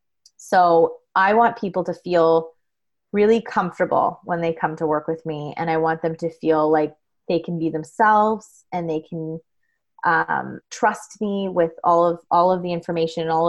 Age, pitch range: 20-39, 165-195 Hz